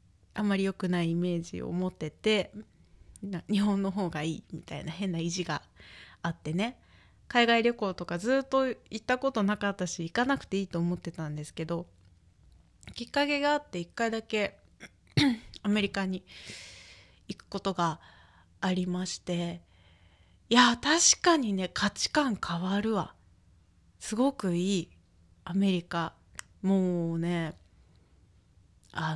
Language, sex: Japanese, female